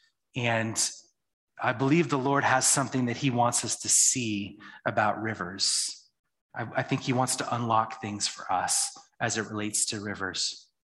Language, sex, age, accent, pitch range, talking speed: English, male, 30-49, American, 130-180 Hz, 165 wpm